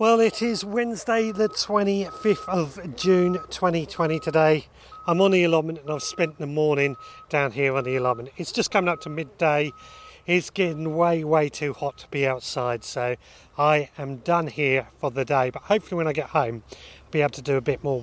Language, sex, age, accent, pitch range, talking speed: English, male, 30-49, British, 140-195 Hz, 205 wpm